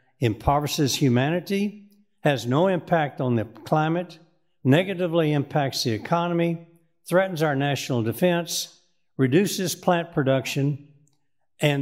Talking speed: 100 wpm